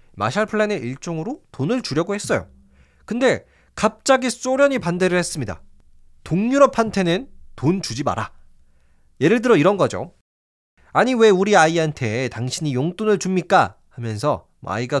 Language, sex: Korean, male